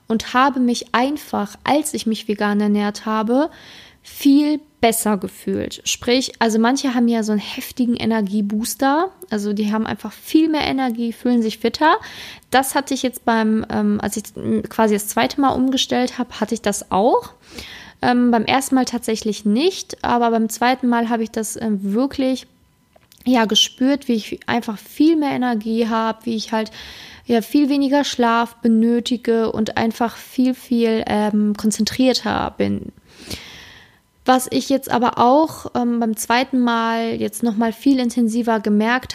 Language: German